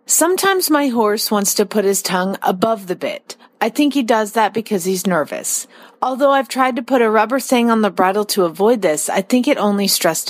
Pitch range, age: 195-255 Hz, 40-59